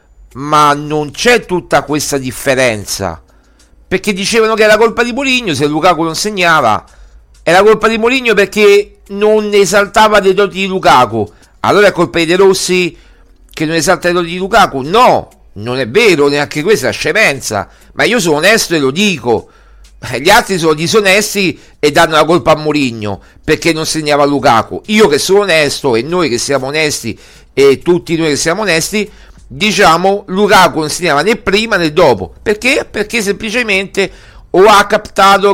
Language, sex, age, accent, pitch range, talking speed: Italian, male, 50-69, native, 150-200 Hz, 170 wpm